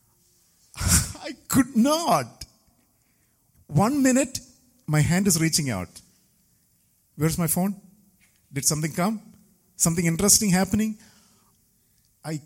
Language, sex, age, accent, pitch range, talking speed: English, male, 50-69, Indian, 155-220 Hz, 95 wpm